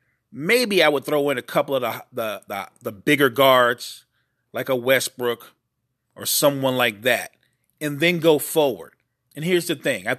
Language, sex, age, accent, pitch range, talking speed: English, male, 40-59, American, 125-170 Hz, 175 wpm